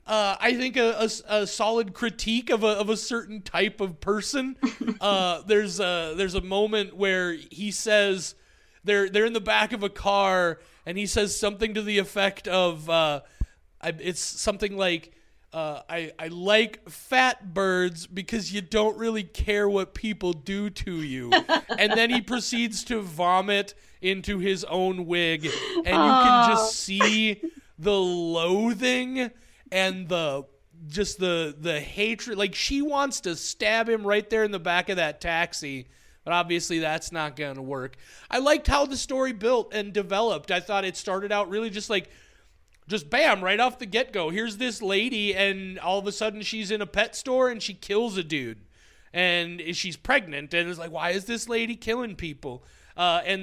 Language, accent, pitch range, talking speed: English, American, 180-225 Hz, 180 wpm